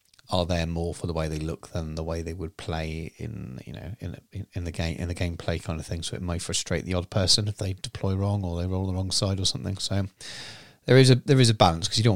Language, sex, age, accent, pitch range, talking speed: English, male, 30-49, British, 80-100 Hz, 280 wpm